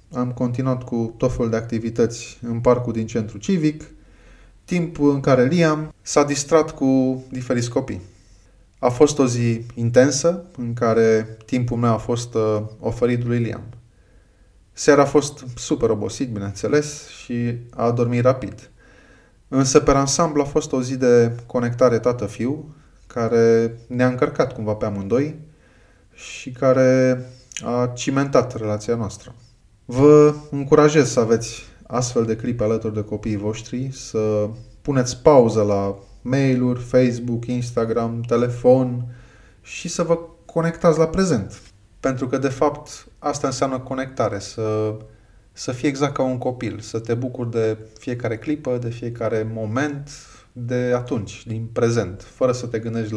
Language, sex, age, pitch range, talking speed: Romanian, male, 20-39, 110-135 Hz, 140 wpm